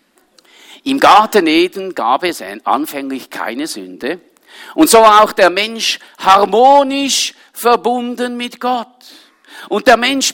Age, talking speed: 50-69, 120 wpm